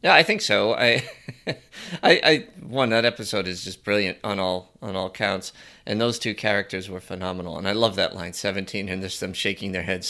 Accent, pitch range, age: American, 100-135 Hz, 30-49